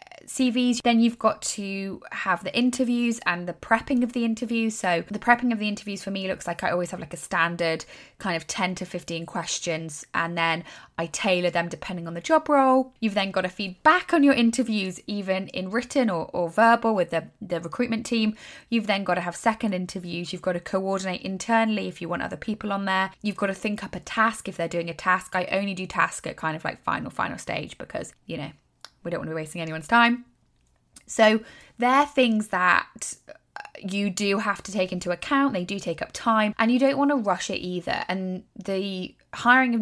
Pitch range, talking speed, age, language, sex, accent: 180-235 Hz, 220 wpm, 20-39, English, female, British